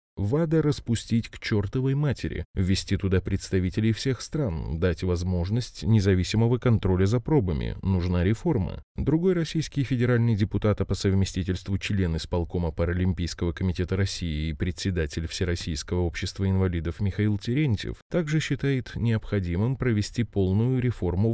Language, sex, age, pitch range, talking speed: Russian, male, 20-39, 90-125 Hz, 120 wpm